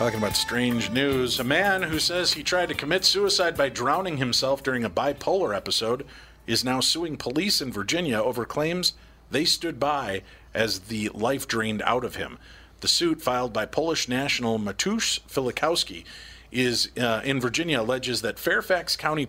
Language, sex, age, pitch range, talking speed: English, male, 40-59, 110-140 Hz, 165 wpm